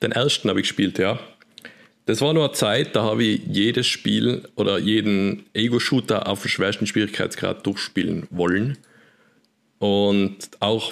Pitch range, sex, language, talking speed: 100-115 Hz, male, German, 150 wpm